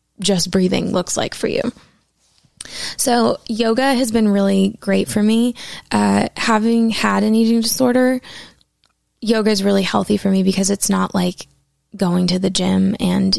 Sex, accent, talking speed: female, American, 155 wpm